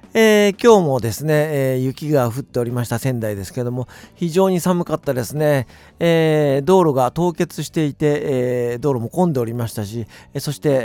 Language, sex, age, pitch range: Japanese, male, 50-69, 105-155 Hz